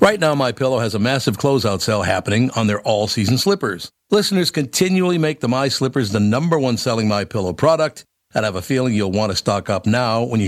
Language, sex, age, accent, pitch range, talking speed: English, male, 60-79, American, 105-140 Hz, 210 wpm